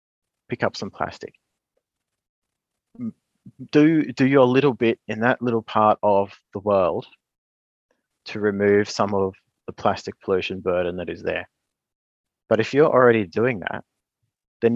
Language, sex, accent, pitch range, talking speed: English, male, Australian, 95-115 Hz, 140 wpm